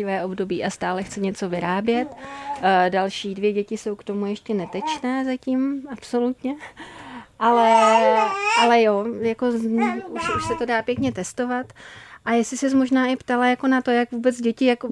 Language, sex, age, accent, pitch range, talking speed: Czech, female, 30-49, native, 200-235 Hz, 165 wpm